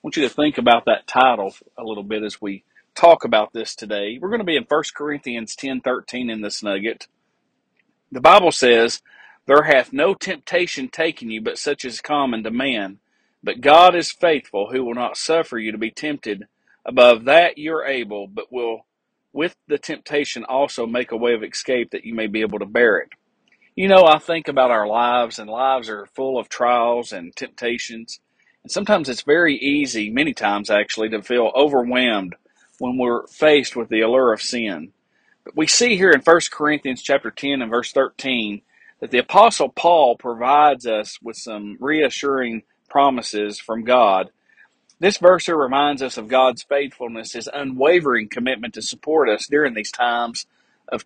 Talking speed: 185 wpm